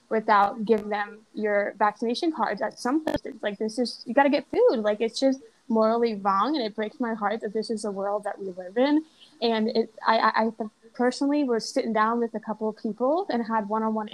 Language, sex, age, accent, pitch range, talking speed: English, female, 10-29, American, 215-250 Hz, 220 wpm